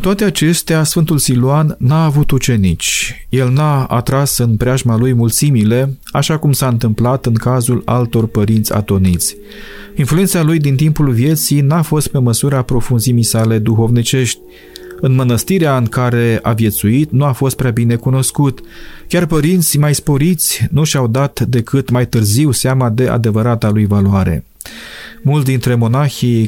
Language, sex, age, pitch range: Romanian, male, 30-49, 115-150 Hz